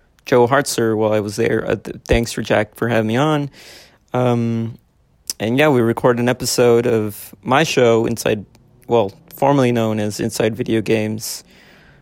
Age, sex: 30-49, male